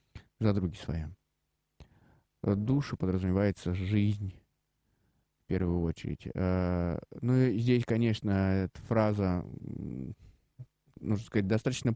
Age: 20-39